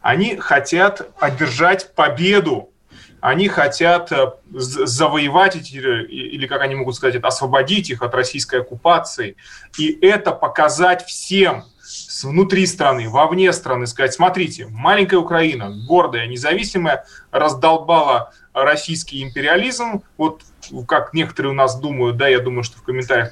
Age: 20-39